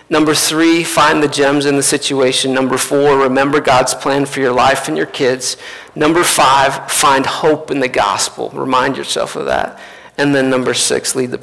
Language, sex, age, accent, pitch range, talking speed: English, male, 40-59, American, 130-160 Hz, 190 wpm